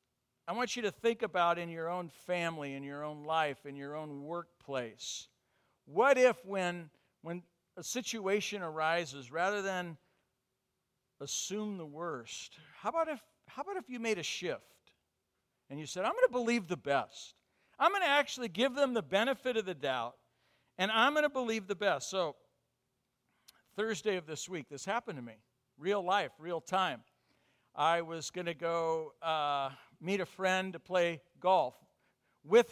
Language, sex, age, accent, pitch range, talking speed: English, male, 50-69, American, 145-205 Hz, 165 wpm